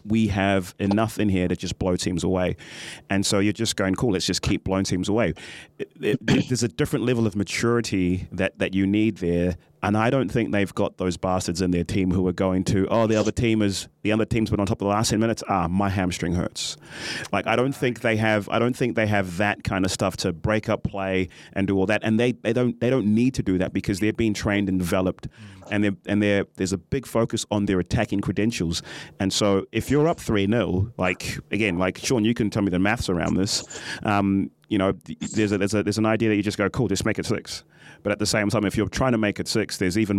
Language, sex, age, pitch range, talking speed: English, male, 30-49, 95-110 Hz, 260 wpm